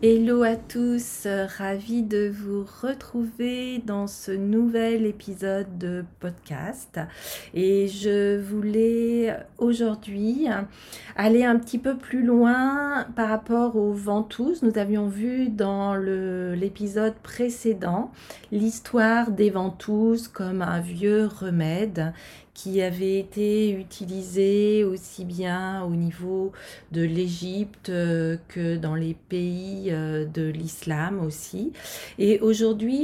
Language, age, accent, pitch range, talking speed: French, 30-49, French, 190-230 Hz, 110 wpm